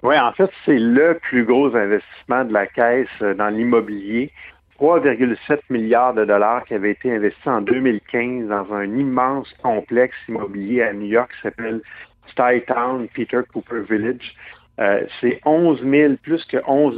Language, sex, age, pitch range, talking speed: French, male, 50-69, 105-125 Hz, 155 wpm